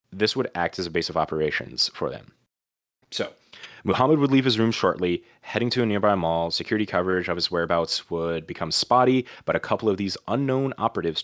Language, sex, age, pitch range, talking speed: English, male, 30-49, 85-115 Hz, 200 wpm